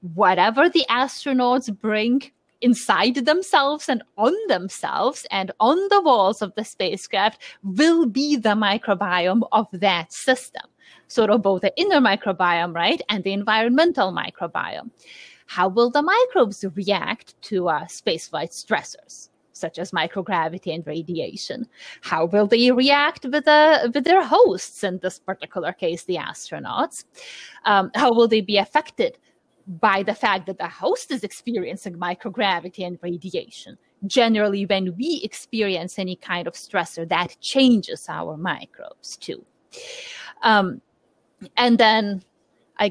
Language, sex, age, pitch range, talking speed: English, female, 30-49, 185-255 Hz, 135 wpm